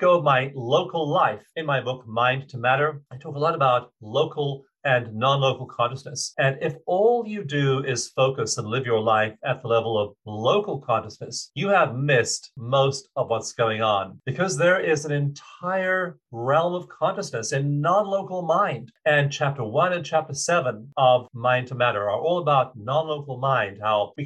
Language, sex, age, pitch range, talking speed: English, male, 40-59, 120-150 Hz, 180 wpm